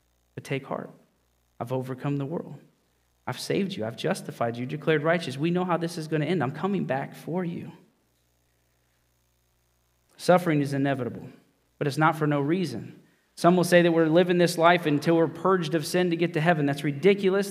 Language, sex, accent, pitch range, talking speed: English, male, American, 125-165 Hz, 190 wpm